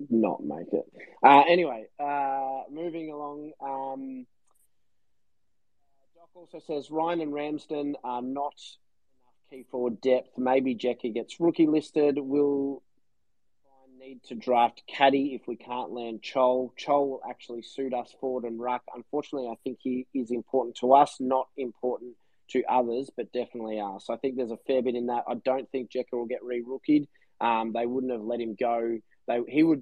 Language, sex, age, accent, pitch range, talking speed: English, male, 20-39, Australian, 120-140 Hz, 175 wpm